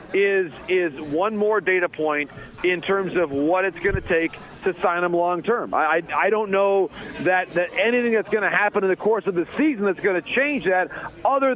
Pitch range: 185-220 Hz